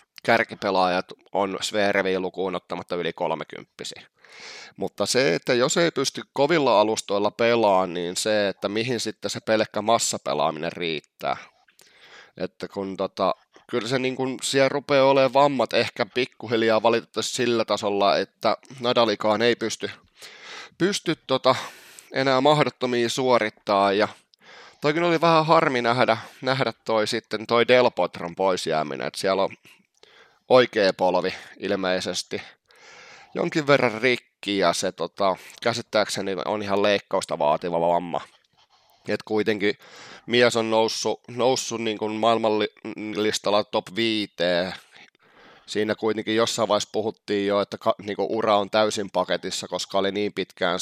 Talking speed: 120 wpm